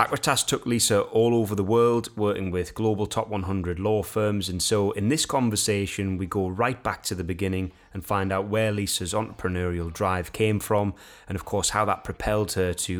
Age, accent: 20-39, British